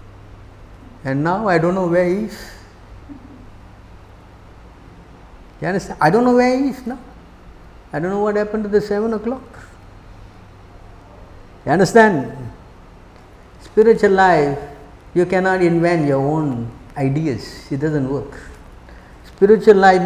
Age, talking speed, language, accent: 60-79, 125 wpm, English, Indian